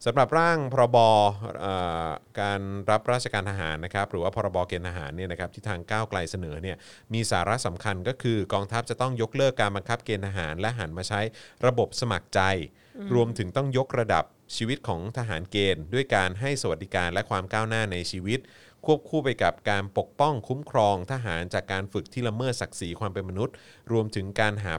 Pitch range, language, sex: 95-120 Hz, Thai, male